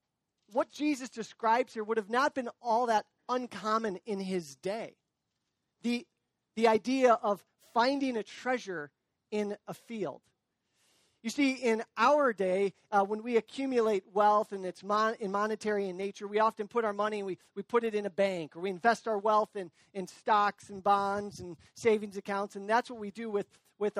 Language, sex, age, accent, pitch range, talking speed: English, male, 40-59, American, 195-240 Hz, 185 wpm